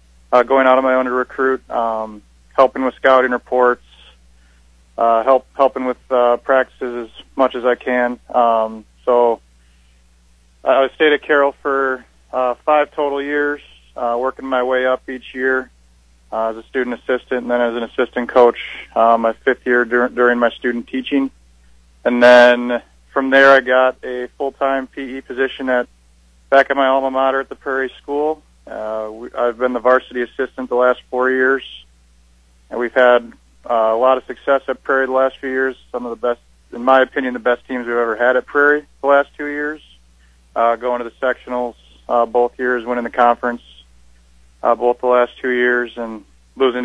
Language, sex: English, male